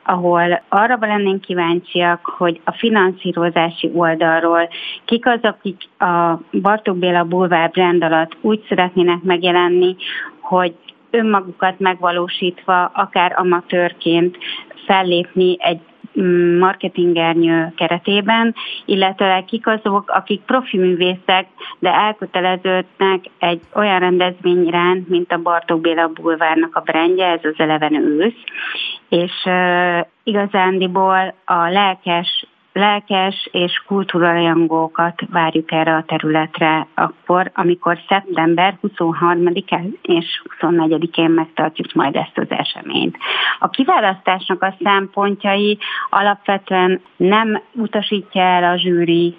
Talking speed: 105 wpm